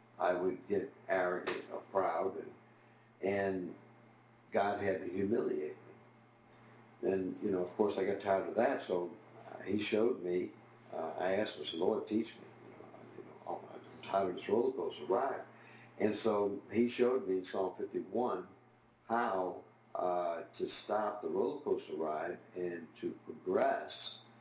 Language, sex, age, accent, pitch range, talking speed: English, male, 60-79, American, 95-120 Hz, 155 wpm